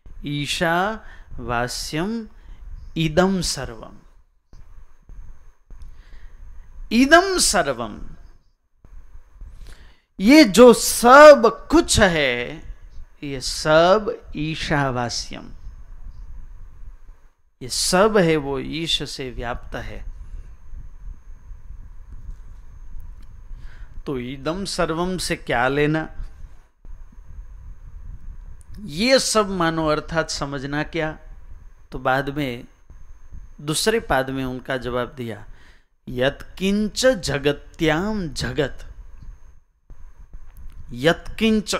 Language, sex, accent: Hindi, male, native